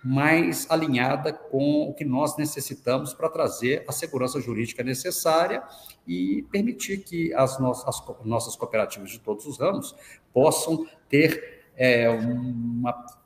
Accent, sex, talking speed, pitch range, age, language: Brazilian, male, 120 wpm, 120-160 Hz, 50-69, Portuguese